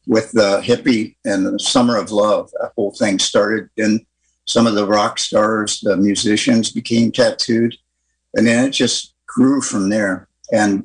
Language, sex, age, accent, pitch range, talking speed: English, male, 50-69, American, 105-130 Hz, 165 wpm